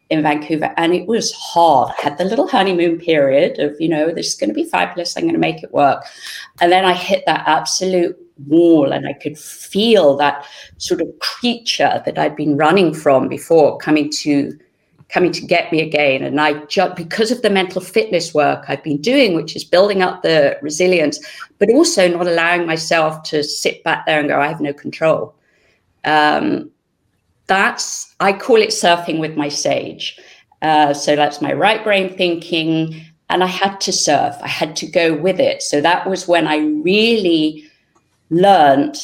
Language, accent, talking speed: English, British, 185 wpm